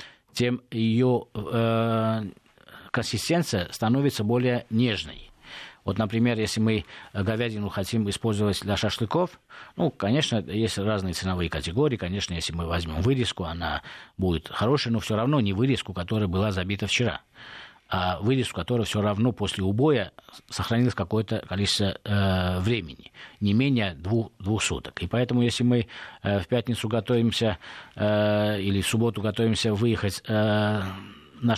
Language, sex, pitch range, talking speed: Russian, male, 95-120 Hz, 140 wpm